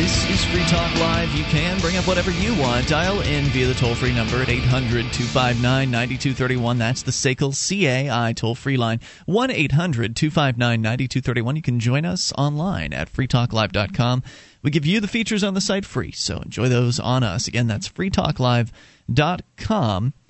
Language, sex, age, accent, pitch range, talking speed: English, male, 30-49, American, 120-160 Hz, 150 wpm